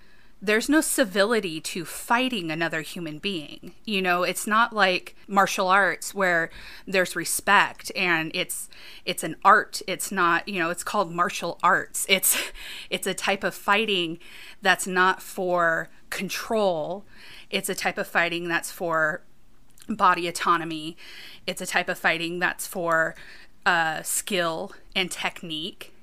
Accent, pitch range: American, 170-200 Hz